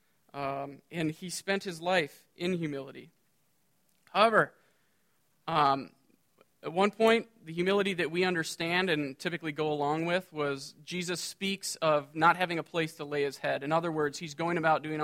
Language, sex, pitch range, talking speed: English, male, 150-190 Hz, 170 wpm